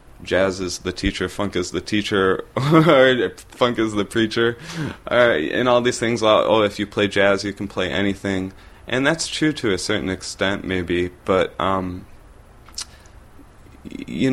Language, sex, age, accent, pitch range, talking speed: English, male, 20-39, American, 90-105 Hz, 160 wpm